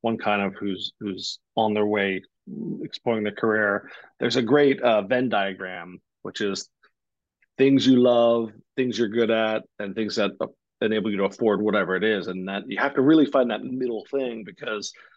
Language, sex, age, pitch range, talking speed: English, male, 40-59, 110-140 Hz, 185 wpm